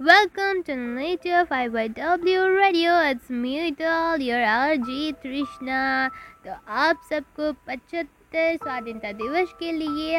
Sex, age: female, 20-39